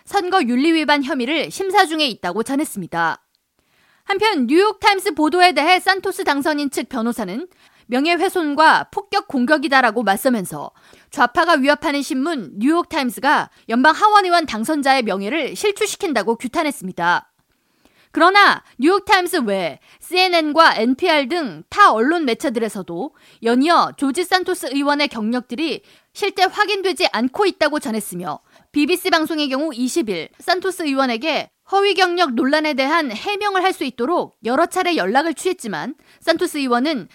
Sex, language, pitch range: female, Korean, 245-350 Hz